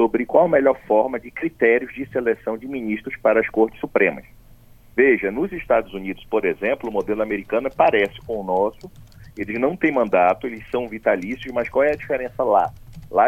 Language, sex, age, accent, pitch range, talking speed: Portuguese, male, 40-59, Brazilian, 110-140 Hz, 190 wpm